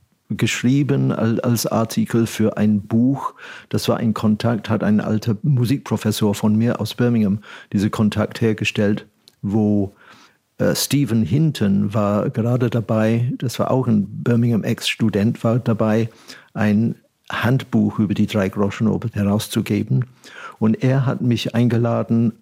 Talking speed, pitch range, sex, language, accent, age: 125 wpm, 105-120 Hz, male, German, German, 50-69